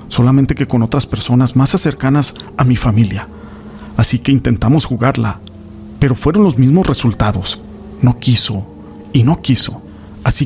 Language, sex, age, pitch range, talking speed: Spanish, male, 40-59, 105-135 Hz, 145 wpm